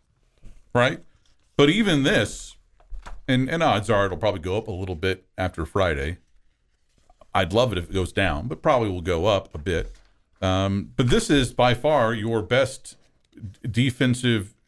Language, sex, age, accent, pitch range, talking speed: English, male, 40-59, American, 95-120 Hz, 165 wpm